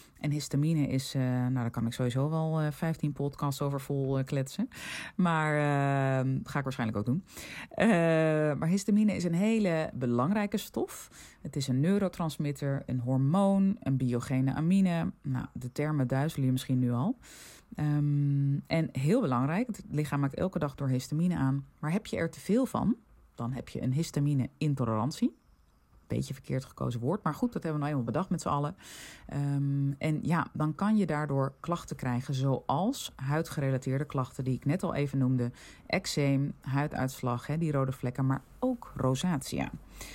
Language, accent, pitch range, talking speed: Dutch, Dutch, 130-160 Hz, 175 wpm